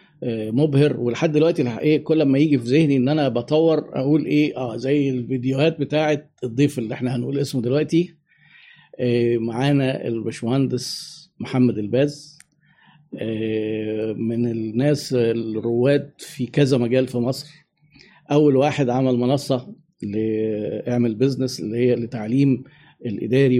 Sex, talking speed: male, 115 wpm